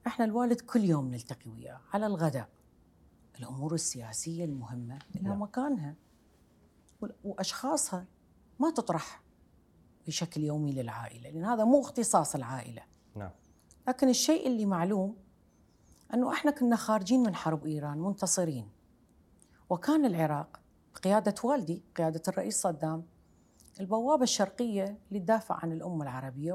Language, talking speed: Arabic, 115 wpm